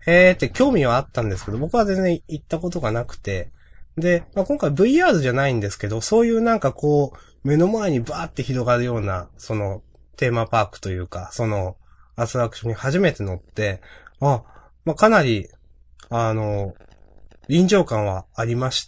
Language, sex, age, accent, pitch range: Japanese, male, 20-39, native, 100-155 Hz